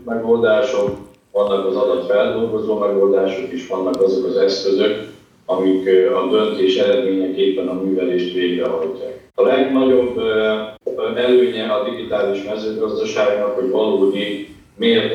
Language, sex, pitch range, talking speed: Hungarian, male, 95-130 Hz, 105 wpm